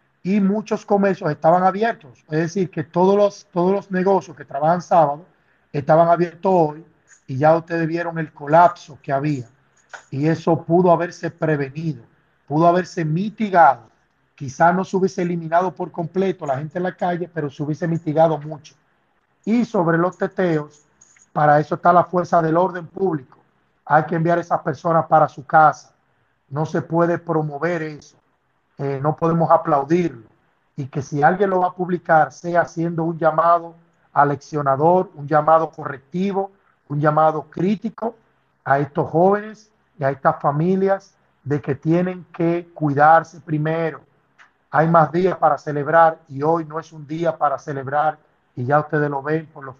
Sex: male